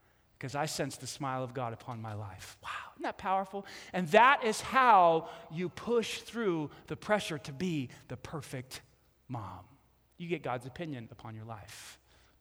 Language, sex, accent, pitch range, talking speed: English, male, American, 135-185 Hz, 175 wpm